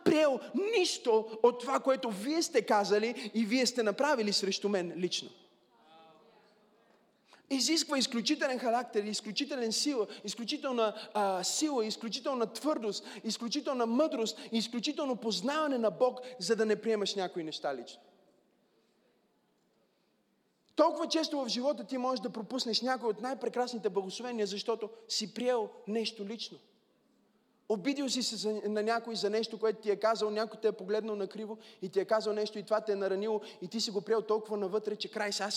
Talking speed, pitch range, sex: 155 wpm, 215-310 Hz, male